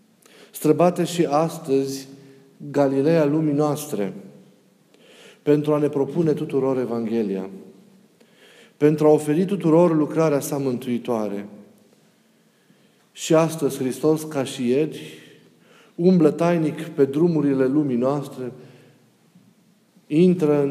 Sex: male